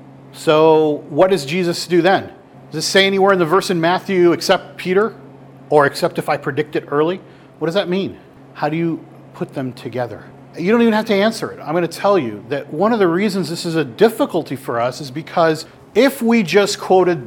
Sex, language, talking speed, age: male, English, 220 wpm, 40-59